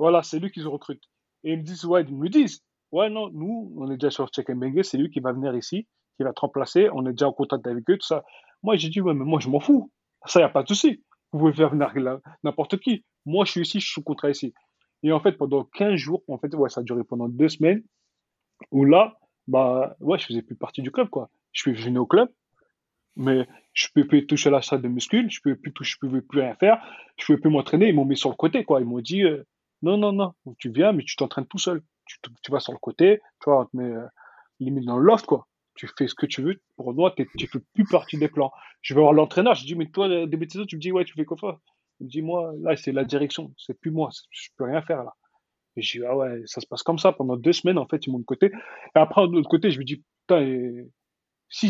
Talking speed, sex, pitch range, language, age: 280 wpm, male, 135-180 Hz, French, 30-49